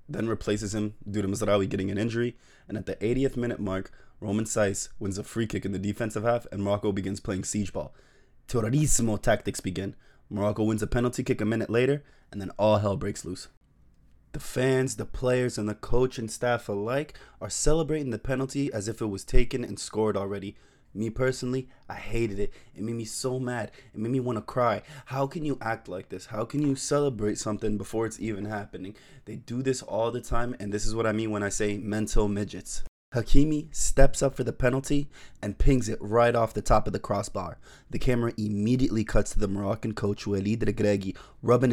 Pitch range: 105-130 Hz